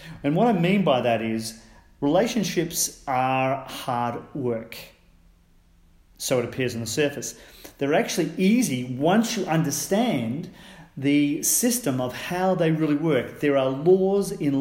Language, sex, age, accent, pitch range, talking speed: English, male, 40-59, Australian, 120-160 Hz, 140 wpm